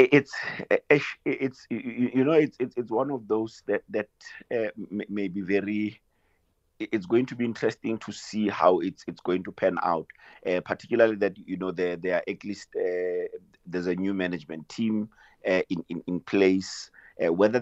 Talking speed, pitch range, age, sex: 175 wpm, 90-100 Hz, 50-69, male